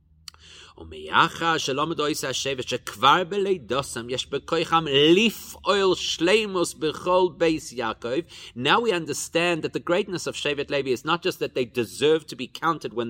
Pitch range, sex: 125-175 Hz, male